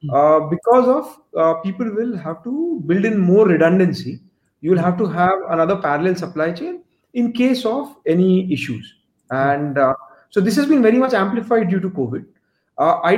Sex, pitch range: male, 160-230 Hz